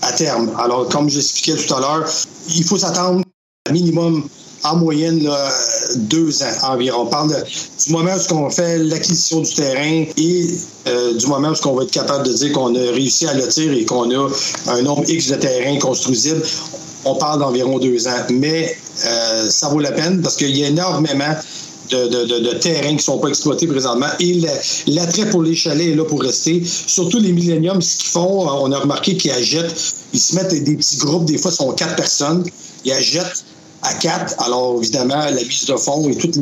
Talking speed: 210 wpm